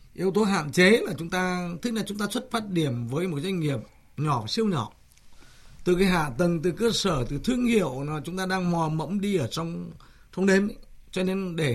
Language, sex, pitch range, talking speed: Vietnamese, male, 150-195 Hz, 230 wpm